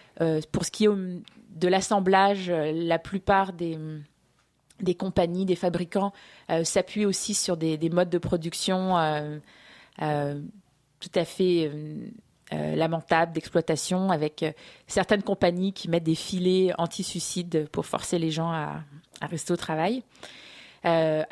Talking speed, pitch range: 140 wpm, 165-195 Hz